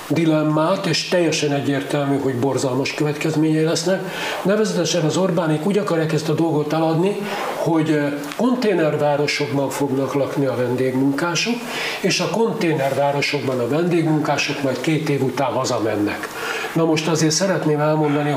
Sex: male